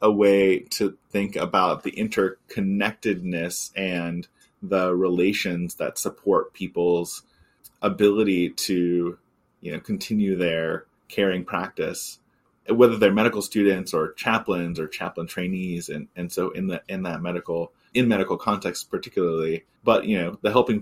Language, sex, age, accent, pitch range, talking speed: English, male, 30-49, American, 85-120 Hz, 135 wpm